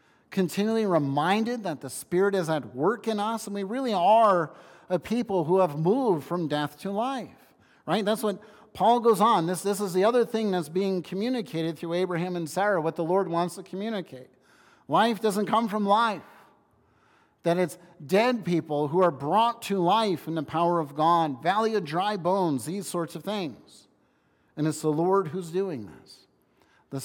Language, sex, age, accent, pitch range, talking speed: English, male, 50-69, American, 145-195 Hz, 185 wpm